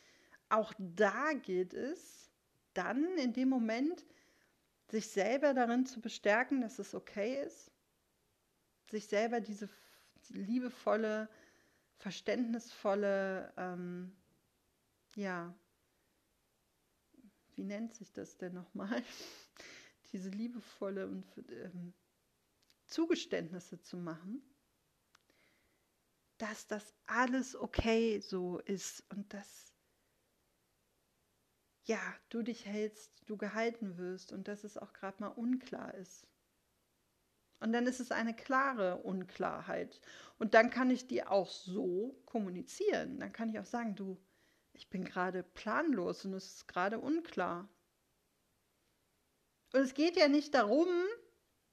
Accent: German